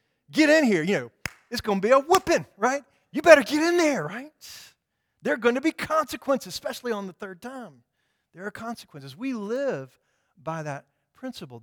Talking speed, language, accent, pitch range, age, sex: 190 wpm, English, American, 125-175 Hz, 40-59, male